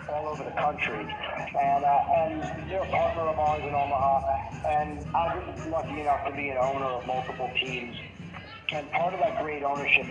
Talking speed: 200 wpm